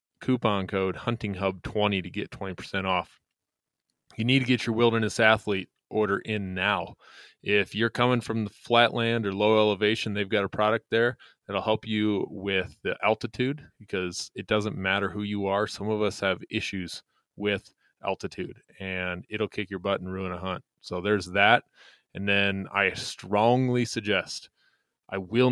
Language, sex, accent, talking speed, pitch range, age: English, male, American, 170 wpm, 95-115 Hz, 20-39